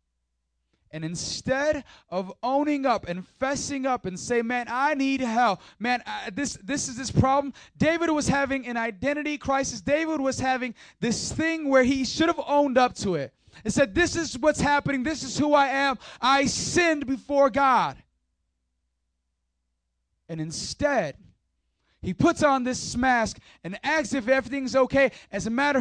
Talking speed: 160 wpm